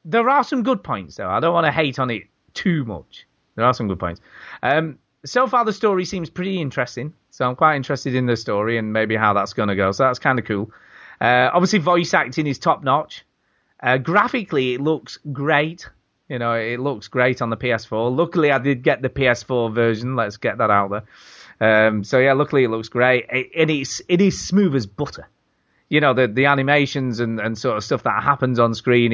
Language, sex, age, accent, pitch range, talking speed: English, male, 30-49, British, 115-150 Hz, 220 wpm